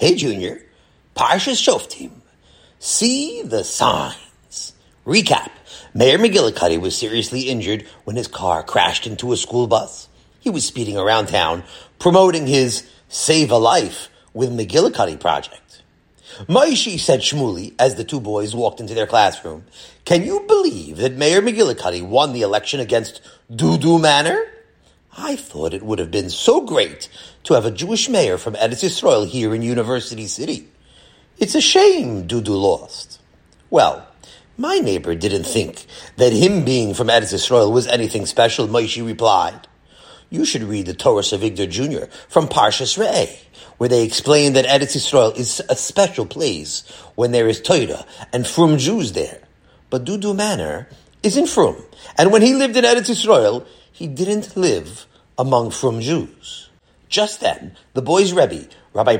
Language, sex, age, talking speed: English, male, 40-59, 155 wpm